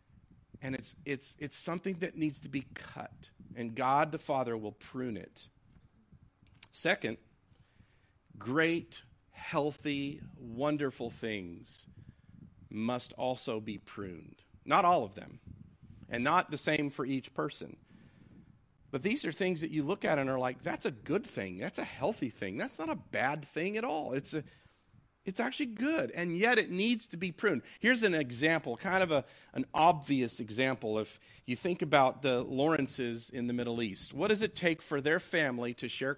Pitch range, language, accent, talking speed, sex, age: 120-165 Hz, English, American, 170 wpm, male, 40-59